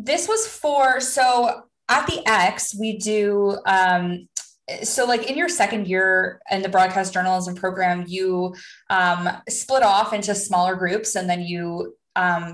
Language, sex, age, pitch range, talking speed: English, female, 20-39, 180-210 Hz, 155 wpm